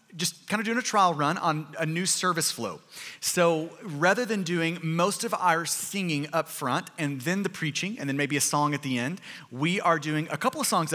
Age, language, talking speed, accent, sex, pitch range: 30-49, English, 225 wpm, American, male, 160-205 Hz